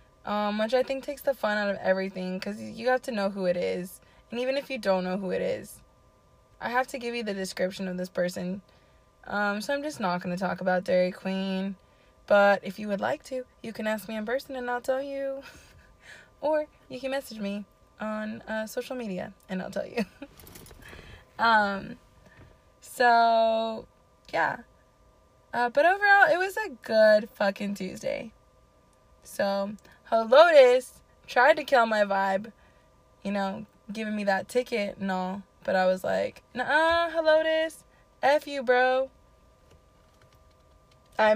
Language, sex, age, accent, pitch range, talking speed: English, female, 20-39, American, 200-265 Hz, 165 wpm